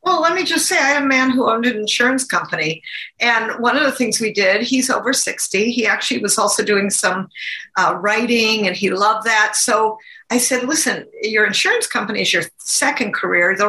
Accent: American